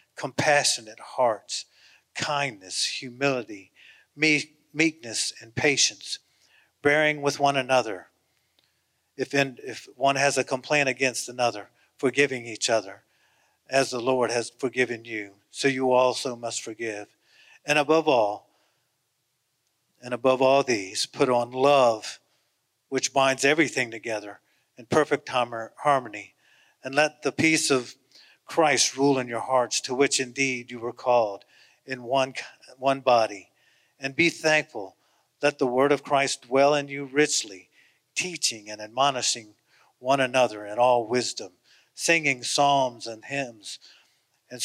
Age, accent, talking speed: 50-69, American, 130 wpm